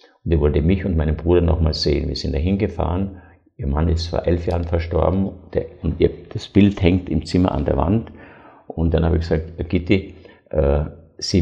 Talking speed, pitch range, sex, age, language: 190 wpm, 80-95 Hz, male, 50-69, German